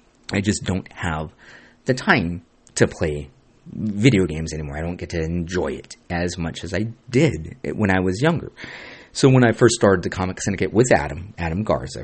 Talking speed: 190 wpm